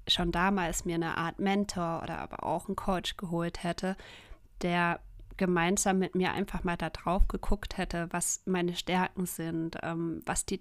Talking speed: 165 wpm